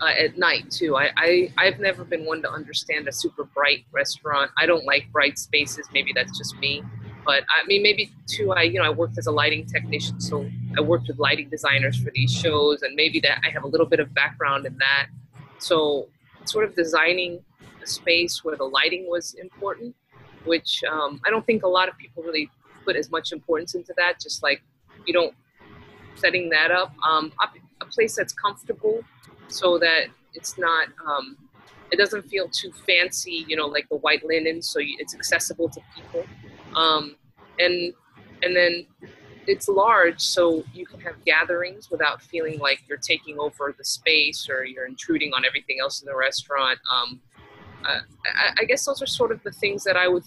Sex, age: female, 20-39